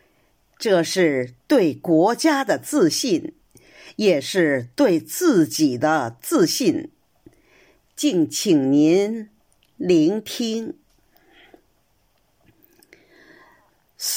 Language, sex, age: Chinese, female, 50-69